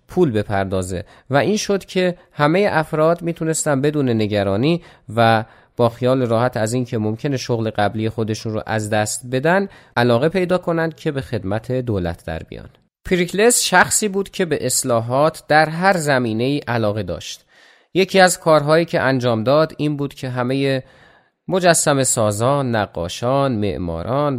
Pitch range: 115-160 Hz